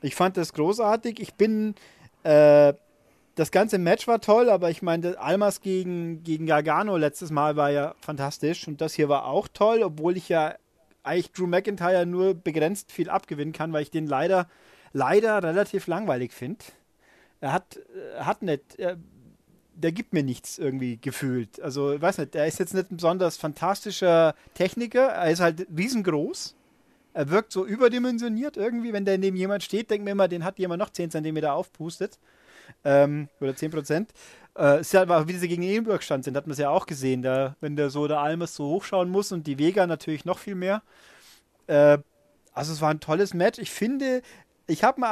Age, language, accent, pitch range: 40-59, German, German, 155-210 Hz